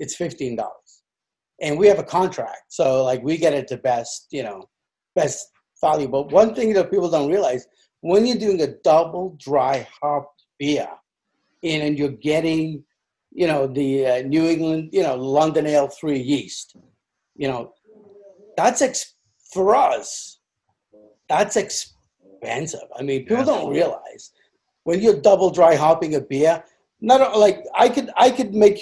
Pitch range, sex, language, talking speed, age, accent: 145-210 Hz, male, English, 155 wpm, 50-69, American